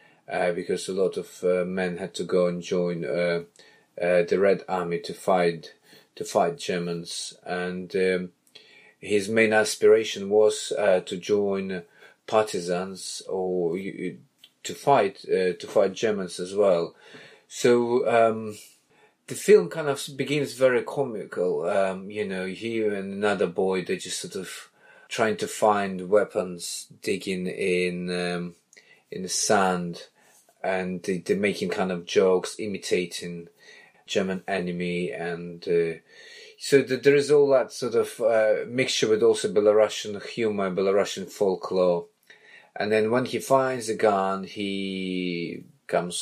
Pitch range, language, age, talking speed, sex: 90-130 Hz, English, 30-49, 140 wpm, male